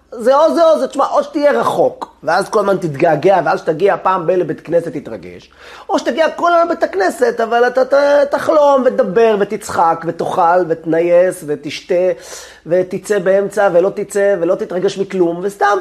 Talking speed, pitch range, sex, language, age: 165 wpm, 150-235 Hz, male, Hebrew, 30-49